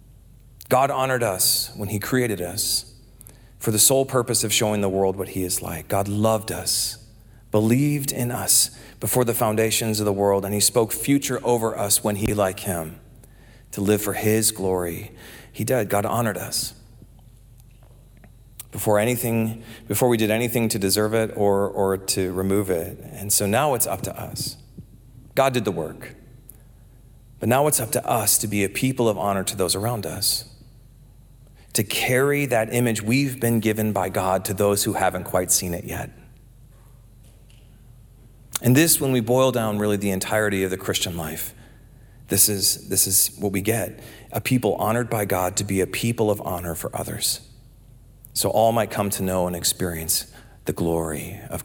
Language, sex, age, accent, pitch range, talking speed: English, male, 40-59, American, 100-120 Hz, 175 wpm